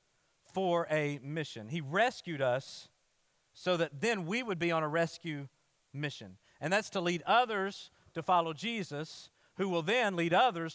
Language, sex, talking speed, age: English, male, 160 wpm, 50-69